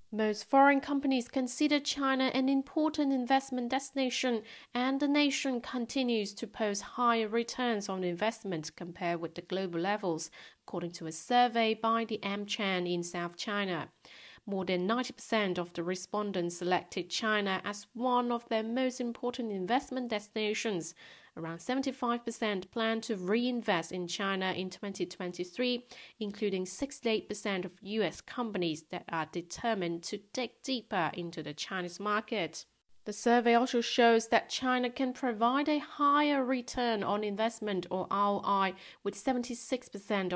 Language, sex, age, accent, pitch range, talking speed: English, female, 40-59, British, 190-245 Hz, 135 wpm